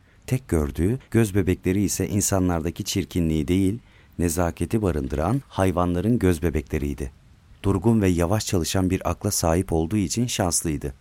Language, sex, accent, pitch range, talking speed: Turkish, male, native, 80-105 Hz, 125 wpm